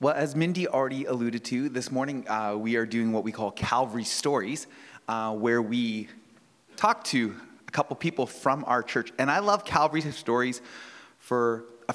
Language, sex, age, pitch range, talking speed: English, male, 30-49, 100-125 Hz, 175 wpm